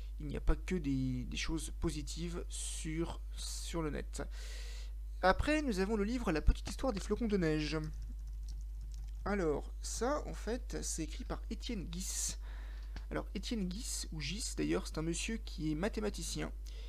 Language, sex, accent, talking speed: French, male, French, 165 wpm